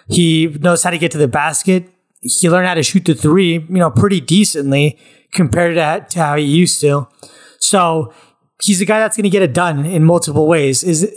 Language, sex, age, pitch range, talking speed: English, male, 20-39, 150-175 Hz, 215 wpm